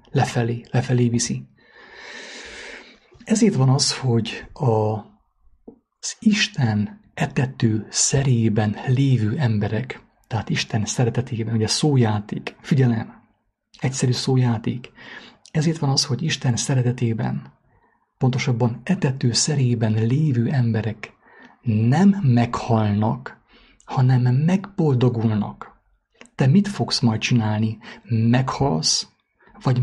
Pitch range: 115-150 Hz